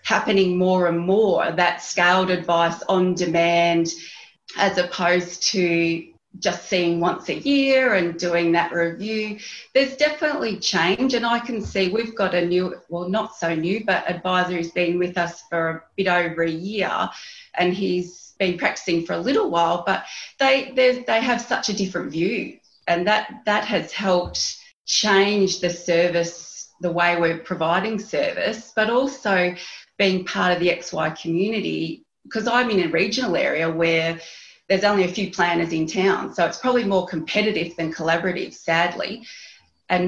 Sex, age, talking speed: female, 30-49, 160 wpm